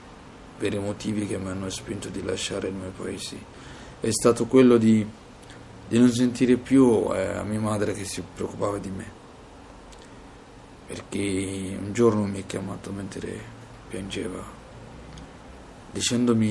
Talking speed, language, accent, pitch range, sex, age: 140 wpm, Italian, native, 95-115 Hz, male, 50-69